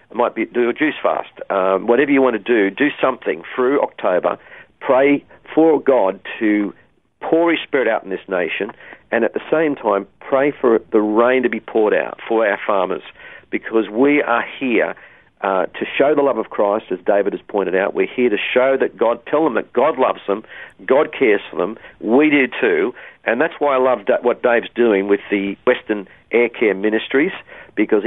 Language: English